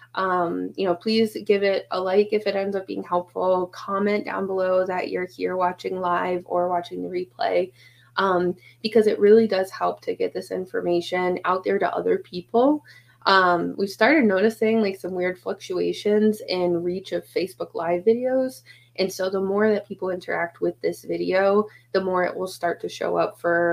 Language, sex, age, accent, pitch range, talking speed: English, female, 20-39, American, 170-200 Hz, 185 wpm